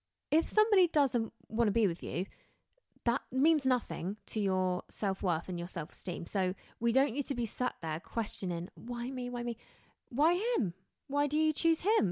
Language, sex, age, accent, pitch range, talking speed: English, female, 20-39, British, 185-255 Hz, 185 wpm